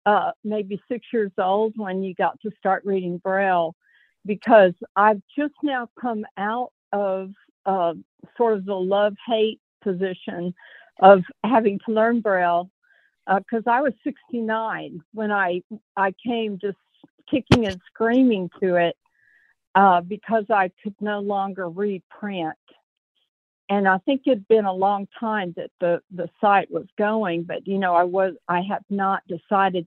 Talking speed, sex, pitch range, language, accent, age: 155 wpm, female, 180-220 Hz, English, American, 50-69